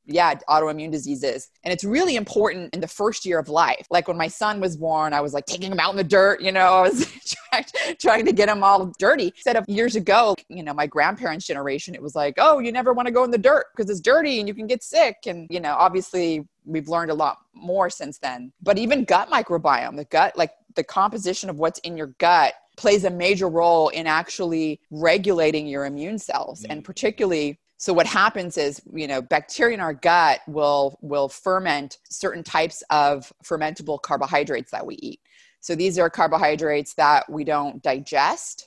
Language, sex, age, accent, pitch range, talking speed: English, female, 20-39, American, 150-190 Hz, 205 wpm